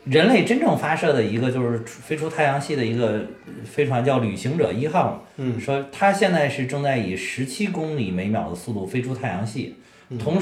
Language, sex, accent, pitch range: Chinese, male, native, 115-150 Hz